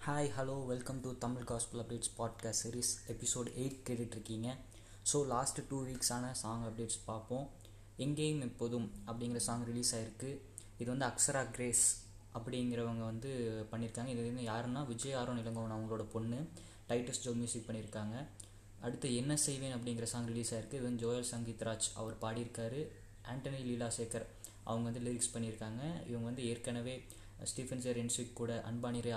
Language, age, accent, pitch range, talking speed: Tamil, 20-39, native, 110-125 Hz, 145 wpm